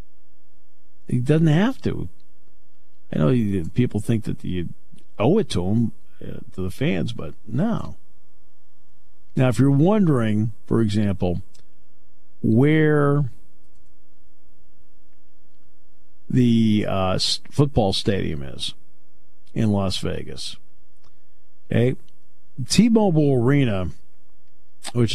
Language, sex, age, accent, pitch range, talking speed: English, male, 50-69, American, 75-125 Hz, 90 wpm